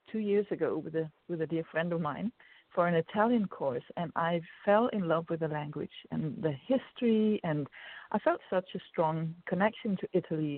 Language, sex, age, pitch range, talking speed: English, female, 50-69, 165-205 Hz, 195 wpm